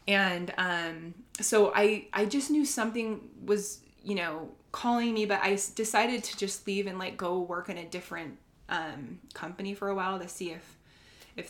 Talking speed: 185 wpm